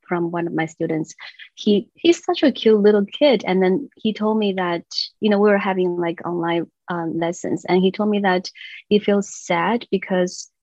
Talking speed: 205 wpm